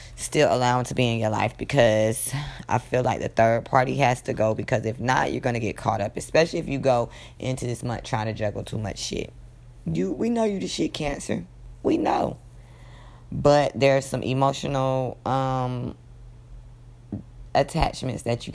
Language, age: English, 20-39